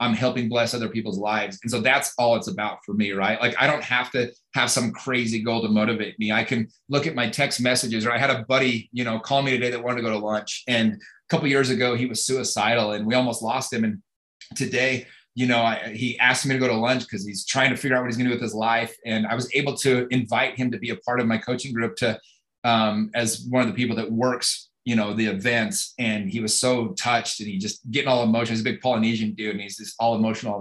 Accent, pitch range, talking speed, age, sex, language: American, 110-125 Hz, 275 wpm, 30-49, male, English